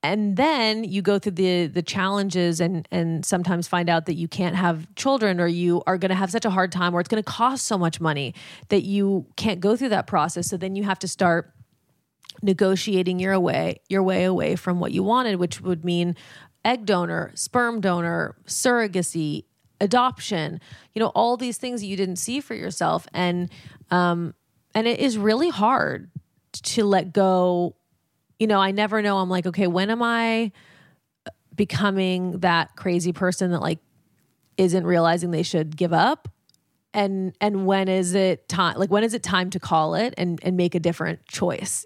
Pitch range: 175-215 Hz